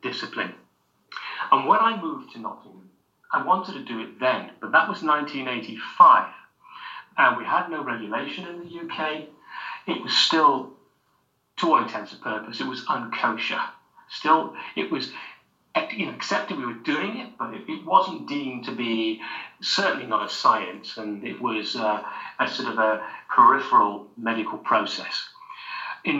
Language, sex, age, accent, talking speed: English, male, 40-59, British, 155 wpm